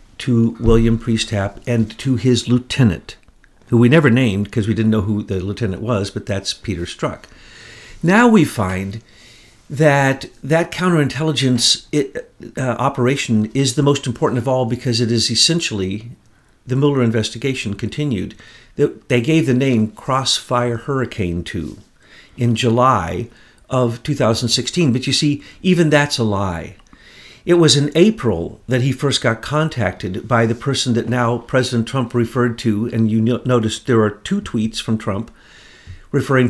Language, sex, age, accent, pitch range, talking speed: English, male, 50-69, American, 110-130 Hz, 150 wpm